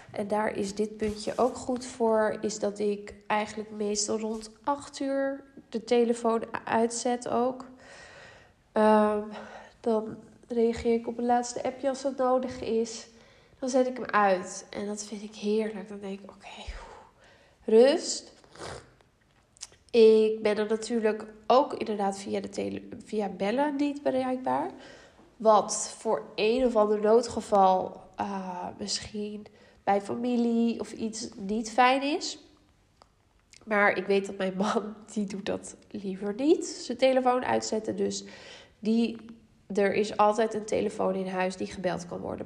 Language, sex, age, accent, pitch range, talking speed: Dutch, female, 10-29, Dutch, 195-235 Hz, 145 wpm